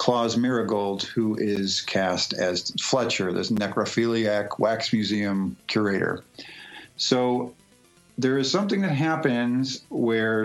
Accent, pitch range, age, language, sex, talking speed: American, 105-125 Hz, 50-69, English, male, 110 wpm